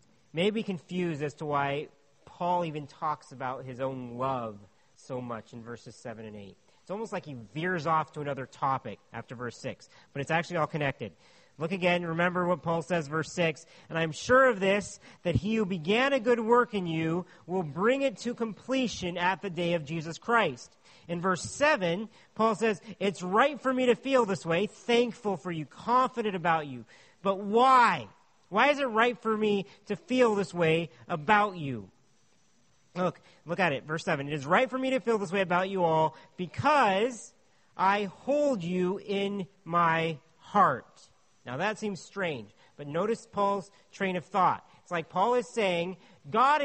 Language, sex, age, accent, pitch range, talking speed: English, male, 40-59, American, 155-225 Hz, 185 wpm